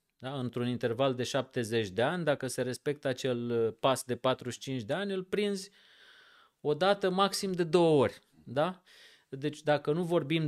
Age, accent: 30-49, native